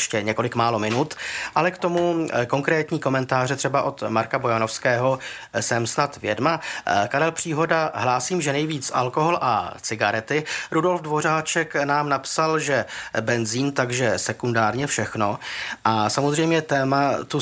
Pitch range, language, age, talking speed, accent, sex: 115-145 Hz, Czech, 30-49, 125 wpm, native, male